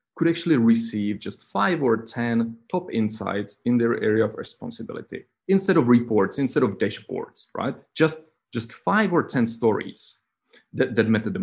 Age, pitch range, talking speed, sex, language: 30-49, 105-140 Hz, 165 wpm, male, English